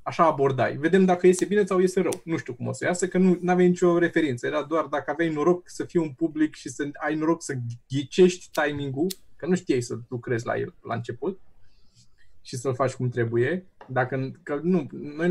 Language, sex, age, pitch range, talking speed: Romanian, male, 20-39, 125-180 Hz, 210 wpm